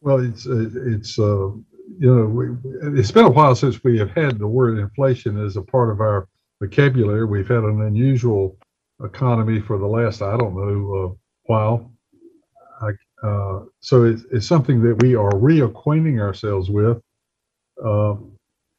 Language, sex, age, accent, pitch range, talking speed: English, male, 60-79, American, 110-145 Hz, 160 wpm